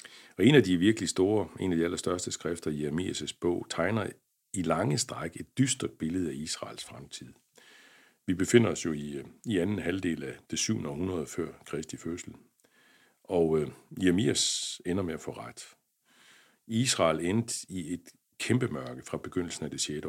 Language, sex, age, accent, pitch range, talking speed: English, male, 60-79, Danish, 80-110 Hz, 170 wpm